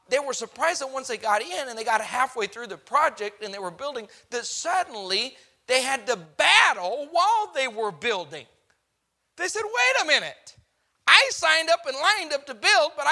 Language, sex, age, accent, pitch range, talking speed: English, male, 40-59, American, 220-355 Hz, 195 wpm